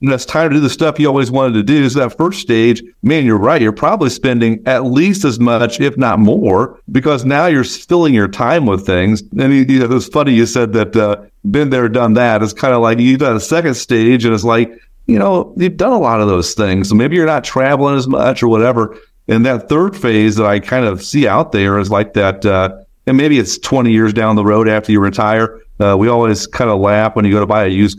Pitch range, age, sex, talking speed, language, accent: 105-135 Hz, 50-69, male, 255 wpm, English, American